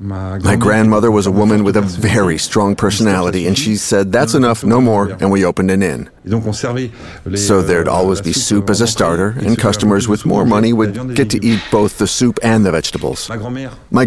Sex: male